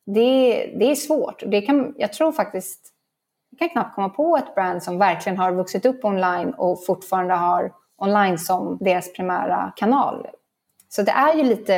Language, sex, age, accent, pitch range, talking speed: English, female, 20-39, Swedish, 180-215 Hz, 180 wpm